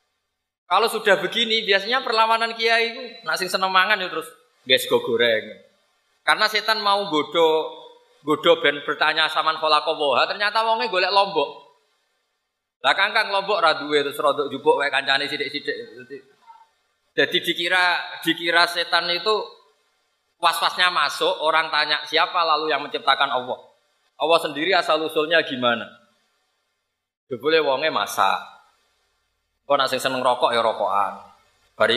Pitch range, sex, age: 140-230 Hz, male, 20-39